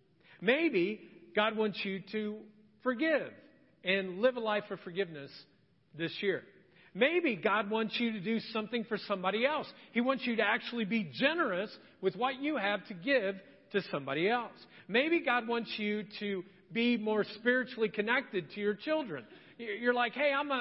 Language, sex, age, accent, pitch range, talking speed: English, male, 40-59, American, 205-245 Hz, 165 wpm